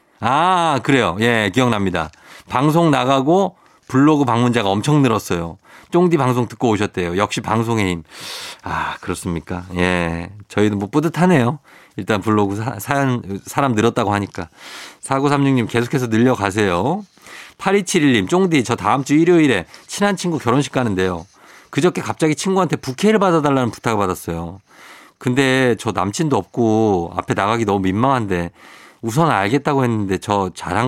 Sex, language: male, Korean